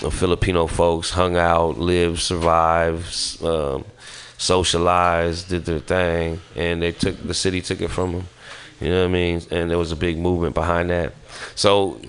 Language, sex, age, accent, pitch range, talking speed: English, male, 30-49, American, 85-95 Hz, 170 wpm